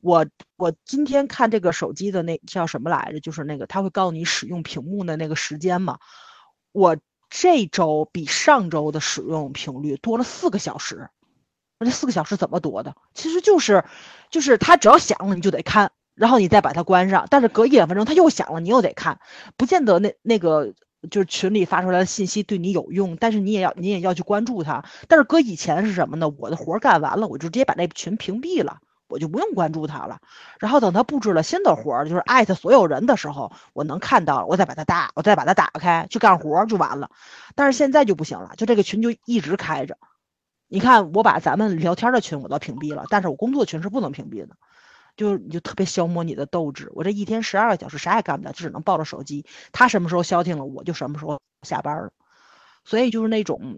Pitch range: 165-225 Hz